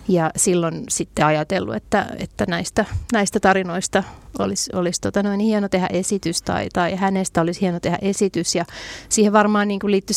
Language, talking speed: Finnish, 165 wpm